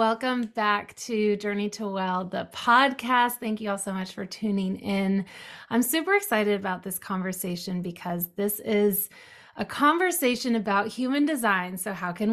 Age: 30-49